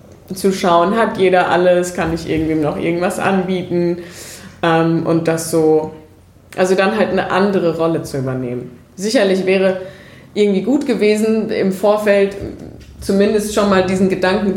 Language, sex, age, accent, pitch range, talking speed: German, female, 20-39, German, 165-215 Hz, 145 wpm